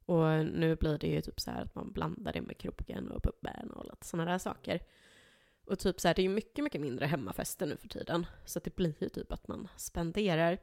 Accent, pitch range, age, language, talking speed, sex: native, 160-195 Hz, 20-39, Swedish, 245 wpm, female